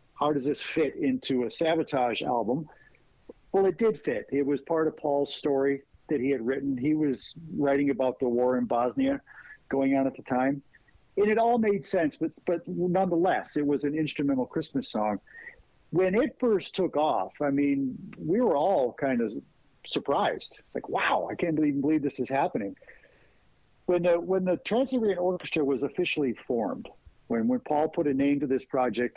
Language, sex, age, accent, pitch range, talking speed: English, male, 50-69, American, 135-175 Hz, 185 wpm